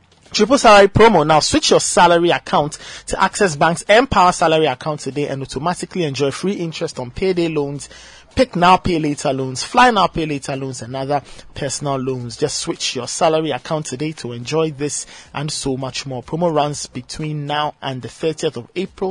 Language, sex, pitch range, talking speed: English, male, 140-180 Hz, 185 wpm